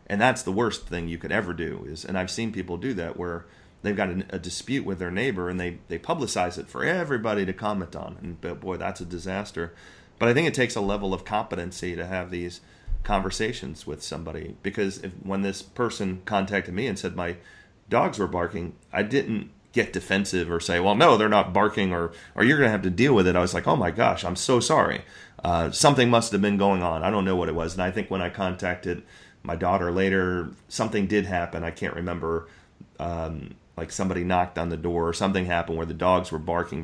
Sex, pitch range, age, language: male, 85-100 Hz, 30-49, English